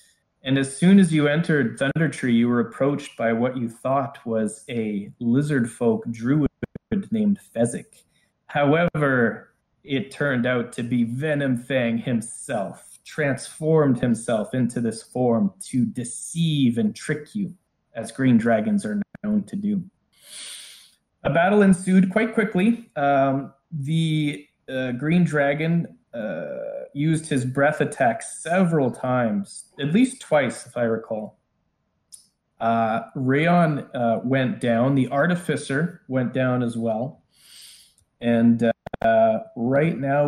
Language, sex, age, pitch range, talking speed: English, male, 20-39, 120-165 Hz, 125 wpm